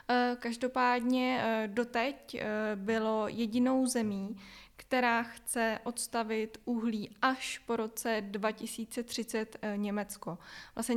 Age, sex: 10-29, female